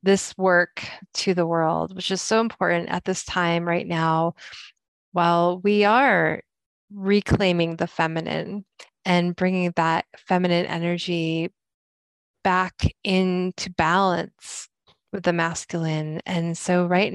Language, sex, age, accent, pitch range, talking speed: English, female, 20-39, American, 170-195 Hz, 120 wpm